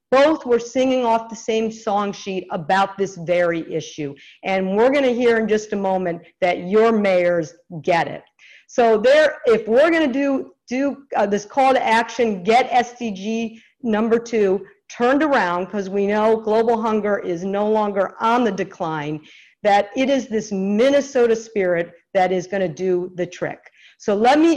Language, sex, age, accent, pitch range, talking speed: English, female, 50-69, American, 185-230 Hz, 175 wpm